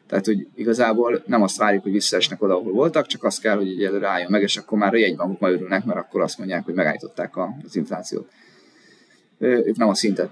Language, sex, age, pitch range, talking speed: Hungarian, male, 20-39, 100-130 Hz, 220 wpm